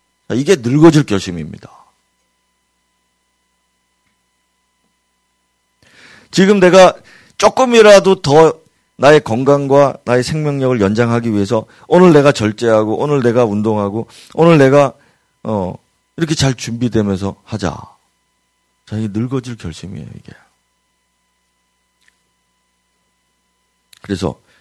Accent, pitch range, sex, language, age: native, 95-135 Hz, male, Korean, 40-59